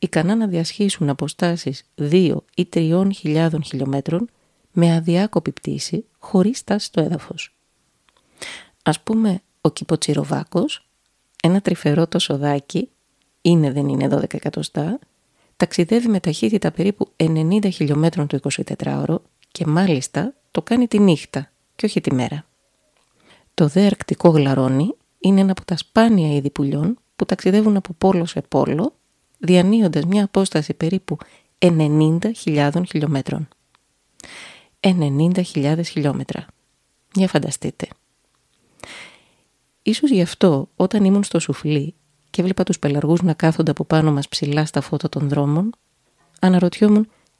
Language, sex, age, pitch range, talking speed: Greek, female, 30-49, 145-190 Hz, 120 wpm